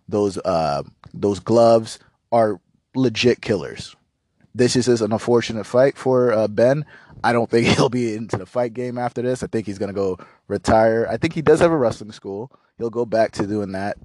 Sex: male